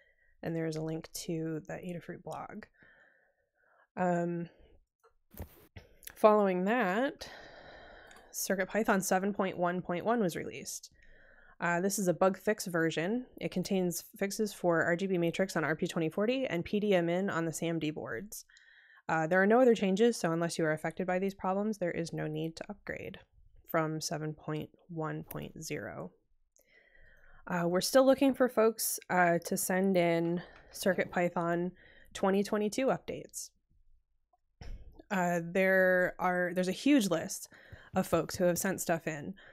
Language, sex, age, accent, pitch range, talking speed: English, female, 20-39, American, 170-200 Hz, 130 wpm